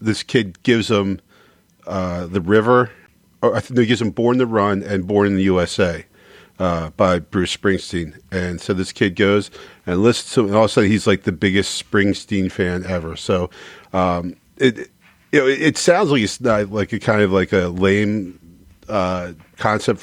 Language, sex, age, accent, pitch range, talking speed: English, male, 40-59, American, 90-105 Hz, 195 wpm